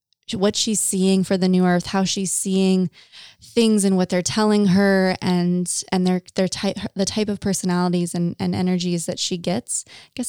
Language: English